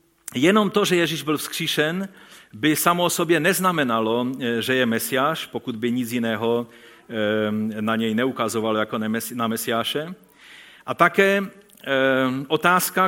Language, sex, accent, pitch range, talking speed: Czech, male, native, 125-180 Hz, 125 wpm